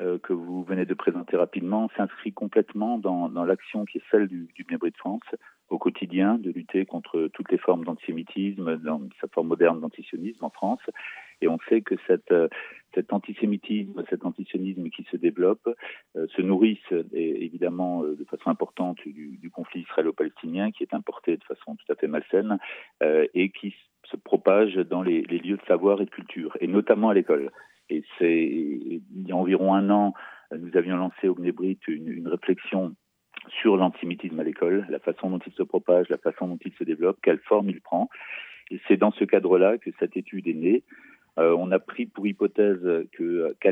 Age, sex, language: 40-59, male, Italian